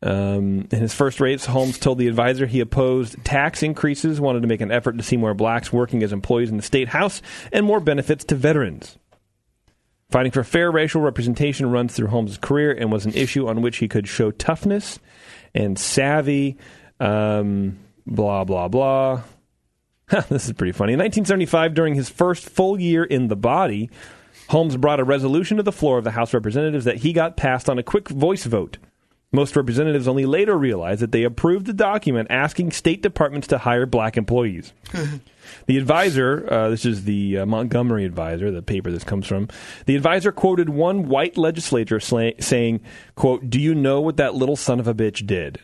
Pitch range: 110-145 Hz